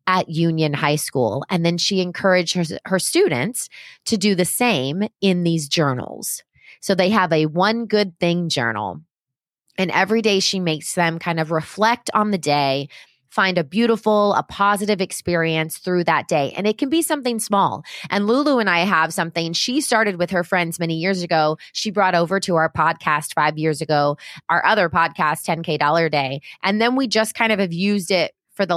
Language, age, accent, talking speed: English, 30-49, American, 195 wpm